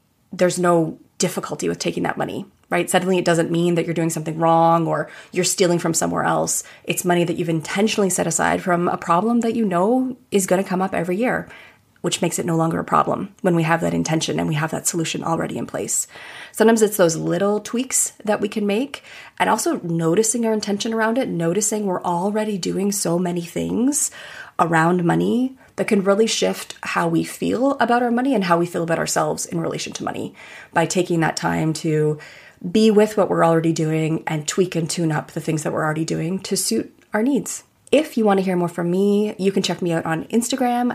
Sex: female